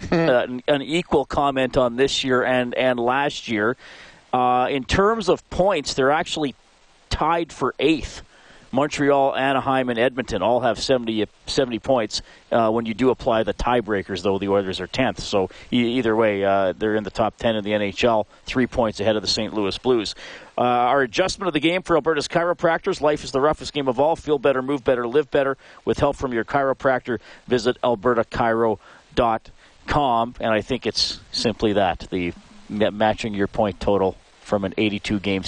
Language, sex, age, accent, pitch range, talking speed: English, male, 40-59, American, 110-150 Hz, 180 wpm